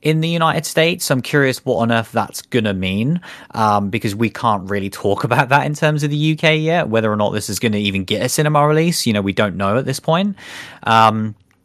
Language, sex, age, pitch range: English, male, 30-49, 105-145 Hz